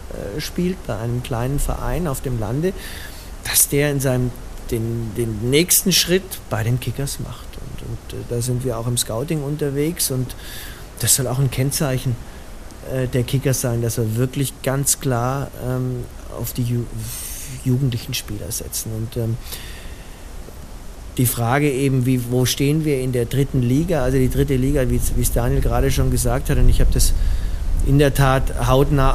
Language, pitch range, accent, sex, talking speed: German, 120-140 Hz, German, male, 175 wpm